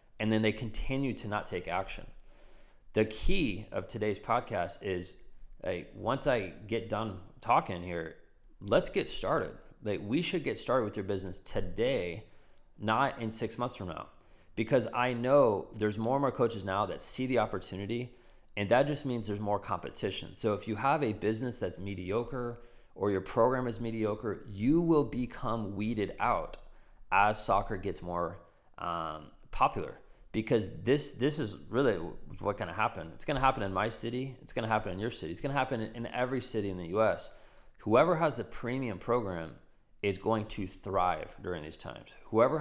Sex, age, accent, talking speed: male, 30-49, American, 180 wpm